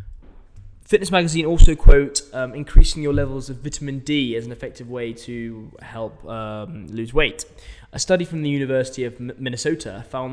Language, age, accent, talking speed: English, 10-29, British, 165 wpm